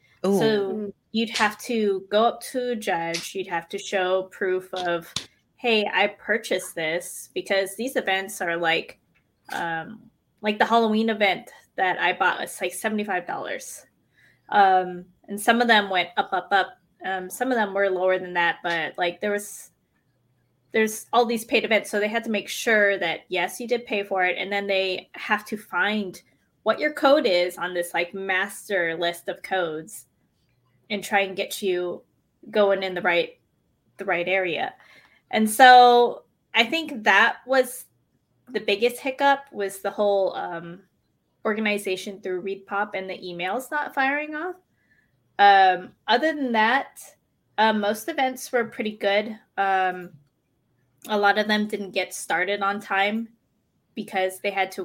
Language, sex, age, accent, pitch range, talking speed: English, female, 20-39, American, 185-230 Hz, 160 wpm